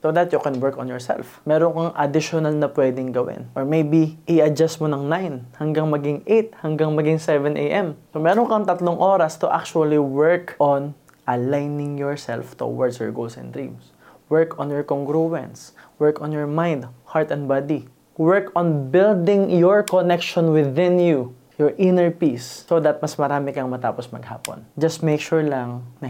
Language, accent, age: Filipino, native, 20-39